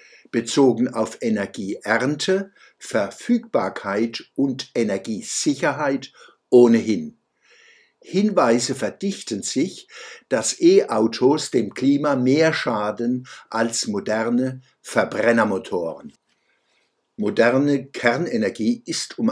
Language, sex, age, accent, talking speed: German, male, 60-79, German, 70 wpm